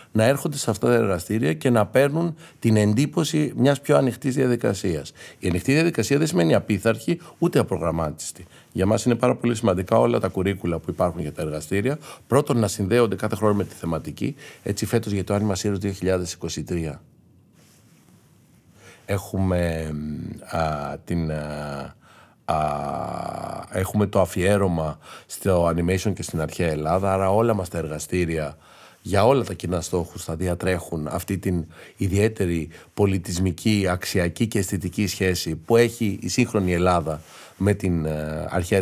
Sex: male